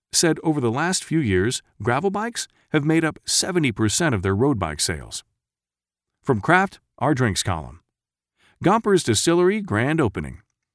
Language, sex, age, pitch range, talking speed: English, male, 40-59, 100-150 Hz, 145 wpm